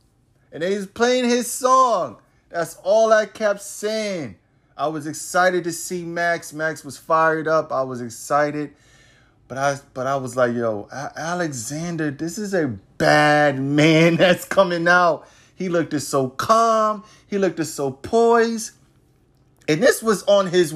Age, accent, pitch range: 30-49, American, 155-225 Hz